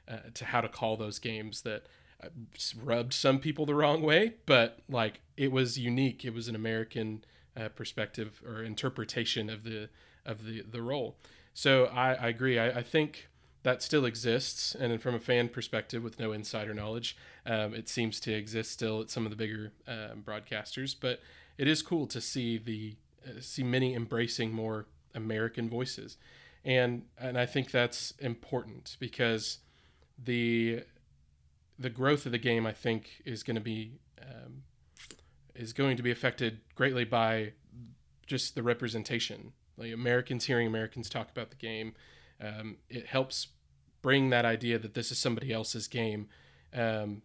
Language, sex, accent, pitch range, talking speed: English, male, American, 110-125 Hz, 165 wpm